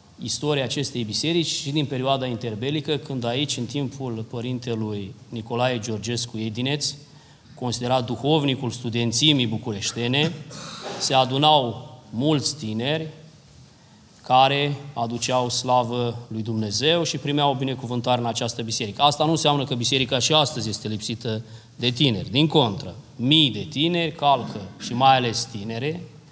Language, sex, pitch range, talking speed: Romanian, male, 115-140 Hz, 130 wpm